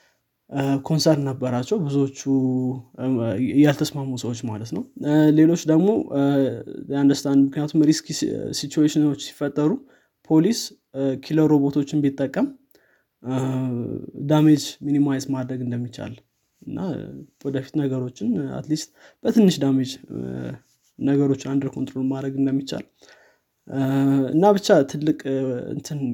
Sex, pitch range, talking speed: male, 135-155 Hz, 90 wpm